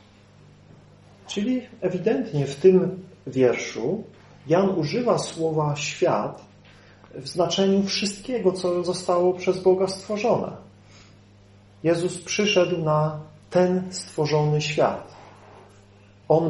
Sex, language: male, Polish